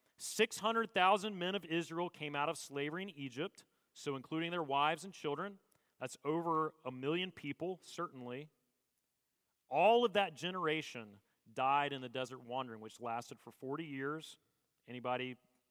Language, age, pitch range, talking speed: English, 40-59, 130-220 Hz, 140 wpm